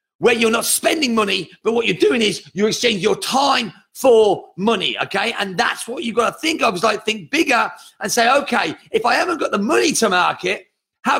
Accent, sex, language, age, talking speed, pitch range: British, male, English, 40-59, 220 wpm, 210-265 Hz